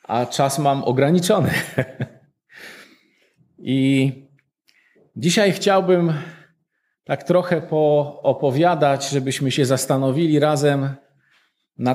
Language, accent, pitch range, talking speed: Polish, native, 135-170 Hz, 75 wpm